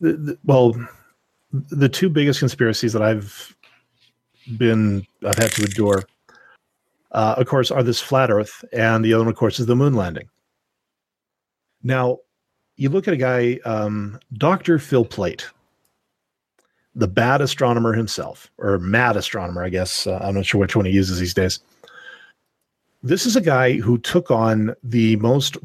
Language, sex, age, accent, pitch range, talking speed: English, male, 40-59, American, 110-135 Hz, 155 wpm